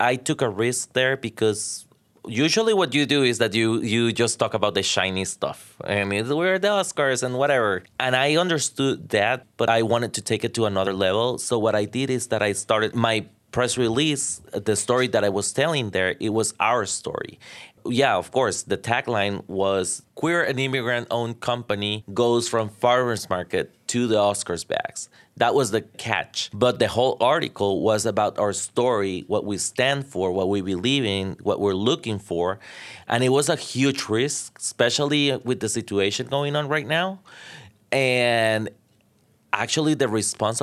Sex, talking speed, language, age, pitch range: male, 180 wpm, English, 30-49, 105-130 Hz